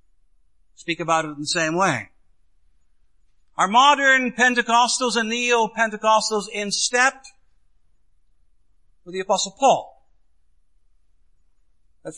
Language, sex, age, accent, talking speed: English, male, 50-69, American, 95 wpm